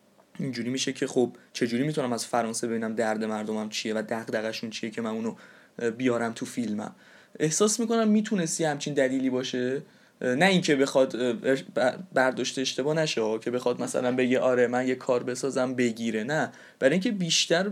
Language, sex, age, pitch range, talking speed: Persian, male, 20-39, 120-165 Hz, 165 wpm